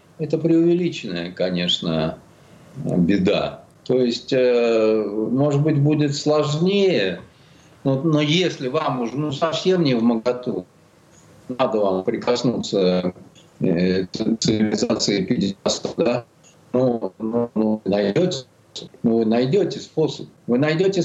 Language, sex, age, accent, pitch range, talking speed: Russian, male, 50-69, native, 115-155 Hz, 105 wpm